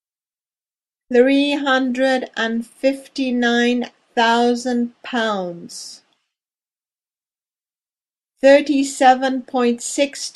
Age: 50-69